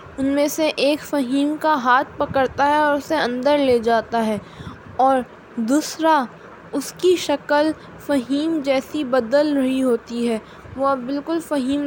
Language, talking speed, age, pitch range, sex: Urdu, 150 wpm, 10-29, 255-300 Hz, female